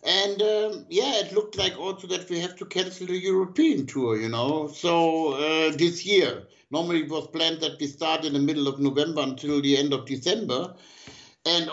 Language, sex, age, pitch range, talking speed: English, male, 60-79, 135-185 Hz, 200 wpm